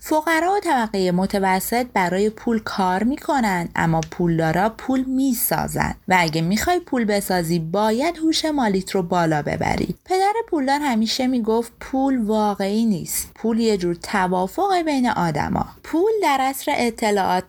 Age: 30-49